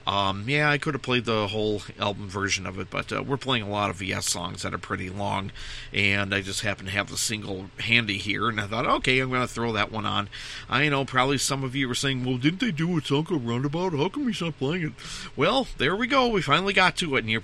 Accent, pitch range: American, 105-145 Hz